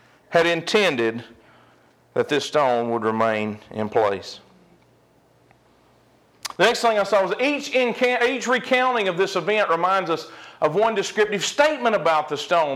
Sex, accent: male, American